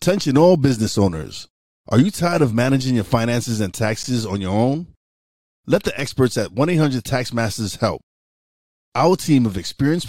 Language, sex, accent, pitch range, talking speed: English, male, American, 105-135 Hz, 155 wpm